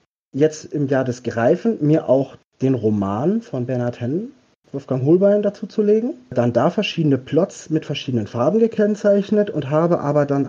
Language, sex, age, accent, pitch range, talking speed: German, male, 40-59, German, 135-185 Hz, 165 wpm